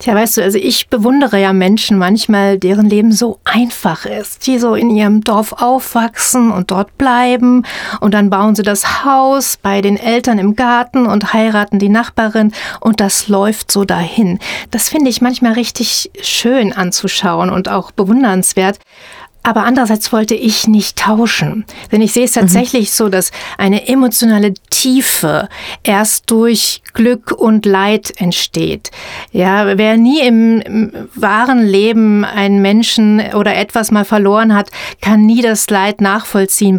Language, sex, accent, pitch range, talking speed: German, female, German, 195-230 Hz, 150 wpm